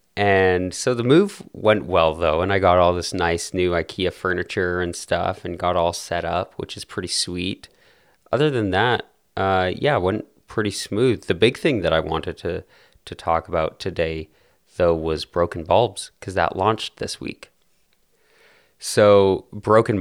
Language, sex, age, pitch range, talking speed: English, male, 30-49, 85-100 Hz, 175 wpm